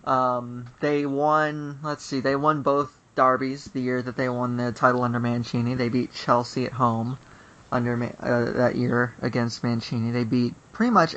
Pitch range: 120-155 Hz